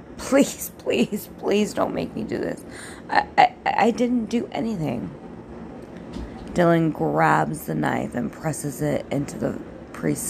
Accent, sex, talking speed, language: American, female, 140 wpm, English